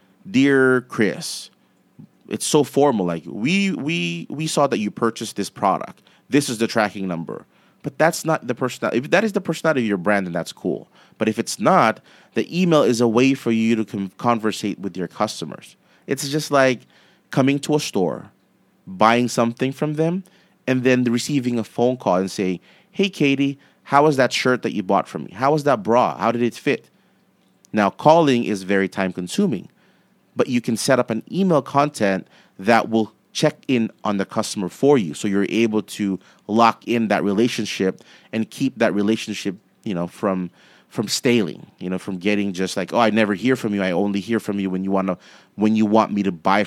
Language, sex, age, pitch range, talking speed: English, male, 30-49, 100-135 Hz, 200 wpm